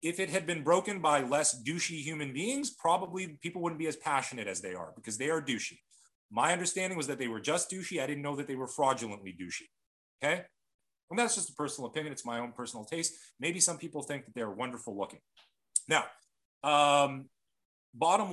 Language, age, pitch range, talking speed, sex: English, 30-49, 125-175 Hz, 205 wpm, male